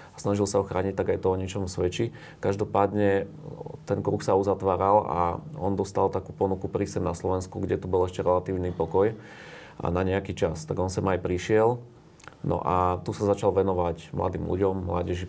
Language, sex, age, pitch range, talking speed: Slovak, male, 30-49, 90-105 Hz, 180 wpm